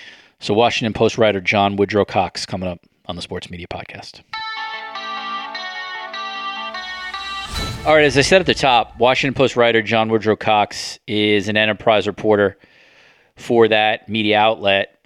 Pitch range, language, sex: 100-115 Hz, English, male